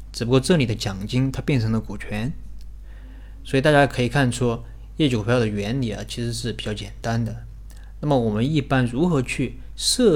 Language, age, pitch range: Chinese, 20-39, 110-140 Hz